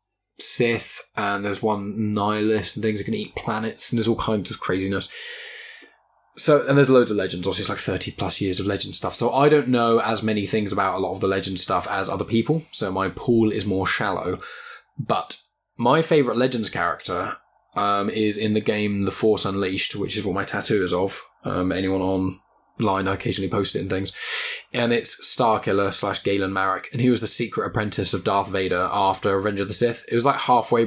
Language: English